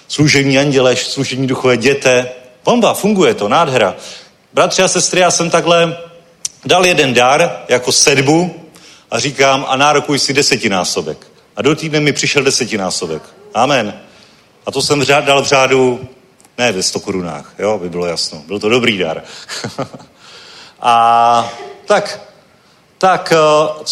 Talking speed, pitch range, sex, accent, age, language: 145 wpm, 125-160 Hz, male, native, 40-59, Czech